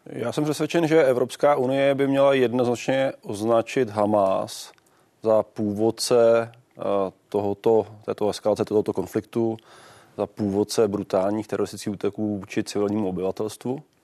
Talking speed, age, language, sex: 110 wpm, 20-39, Czech, male